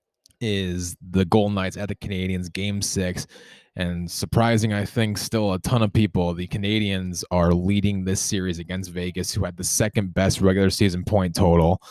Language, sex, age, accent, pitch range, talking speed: English, male, 20-39, American, 90-105 Hz, 175 wpm